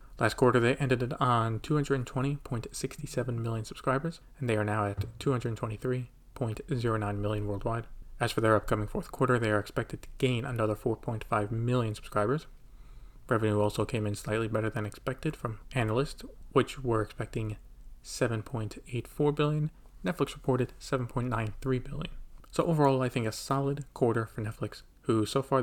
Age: 30-49